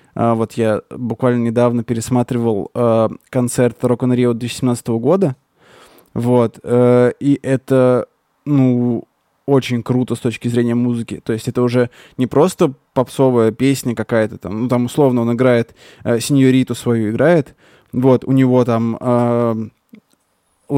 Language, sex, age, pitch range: Russian, male, 20-39, 120-135 Hz